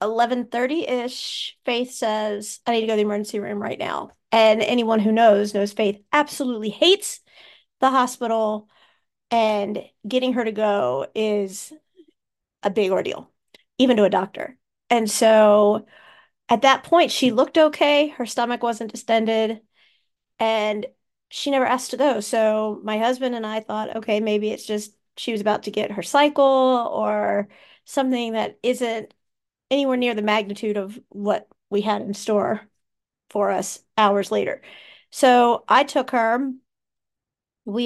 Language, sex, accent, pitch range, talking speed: English, female, American, 215-250 Hz, 150 wpm